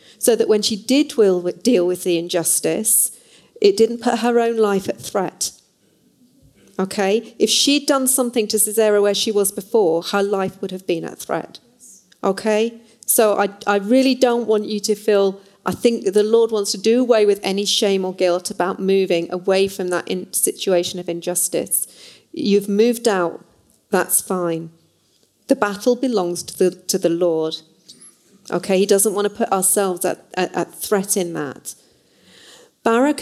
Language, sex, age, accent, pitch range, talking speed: English, female, 40-59, British, 180-230 Hz, 165 wpm